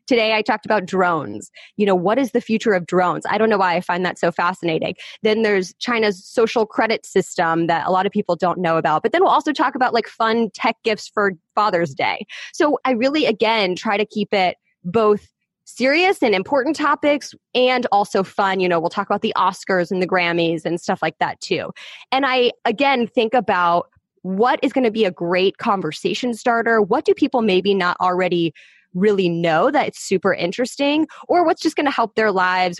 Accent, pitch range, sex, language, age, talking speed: American, 175-225 Hz, female, English, 20-39, 210 wpm